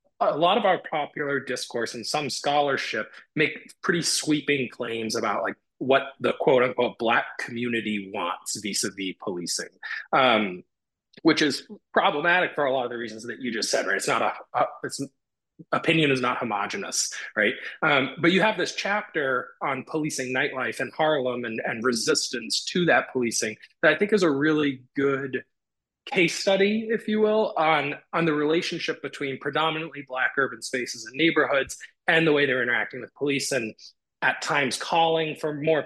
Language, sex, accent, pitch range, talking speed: English, male, American, 125-160 Hz, 170 wpm